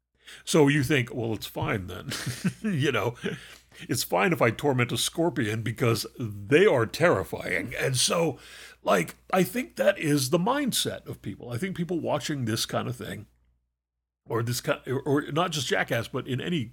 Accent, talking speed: American, 180 wpm